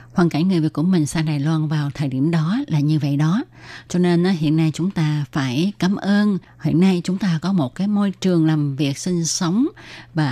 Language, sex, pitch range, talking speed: Vietnamese, female, 145-185 Hz, 235 wpm